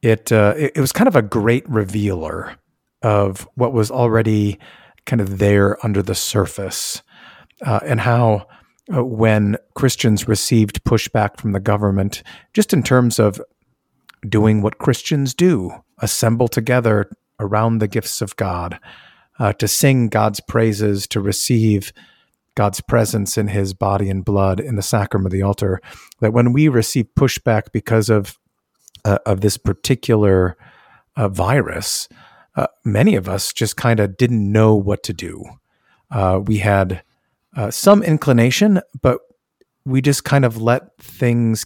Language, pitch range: English, 100-120 Hz